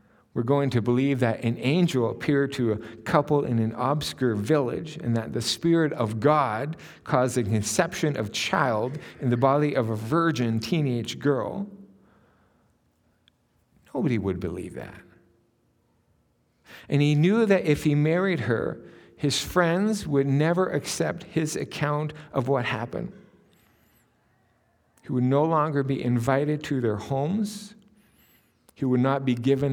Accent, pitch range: American, 115-155 Hz